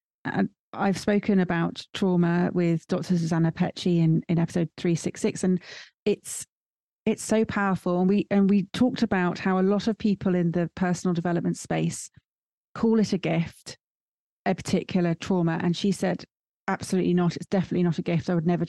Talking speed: 175 wpm